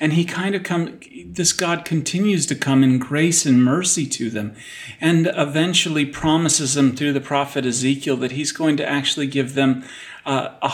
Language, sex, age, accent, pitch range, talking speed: English, male, 40-59, American, 130-150 Hz, 180 wpm